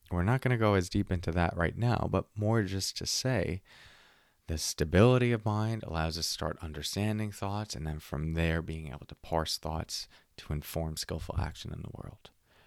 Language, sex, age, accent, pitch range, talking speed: English, male, 30-49, American, 80-95 Hz, 200 wpm